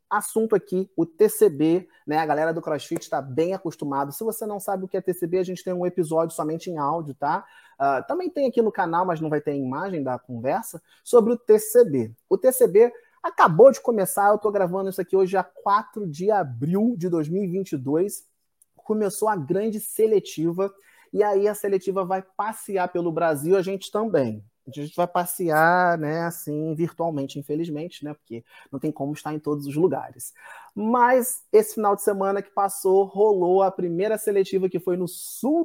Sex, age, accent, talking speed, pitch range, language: male, 30-49, Brazilian, 185 wpm, 160-215 Hz, Portuguese